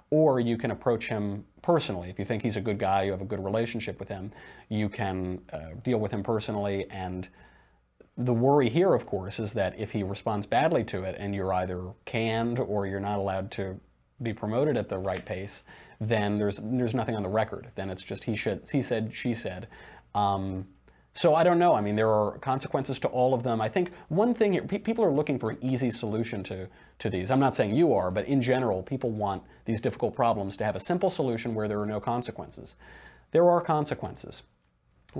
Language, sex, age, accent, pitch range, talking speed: English, male, 30-49, American, 95-125 Hz, 220 wpm